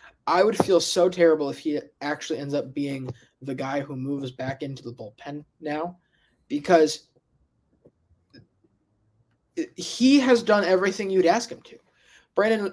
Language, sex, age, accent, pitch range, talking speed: English, male, 20-39, American, 150-195 Hz, 140 wpm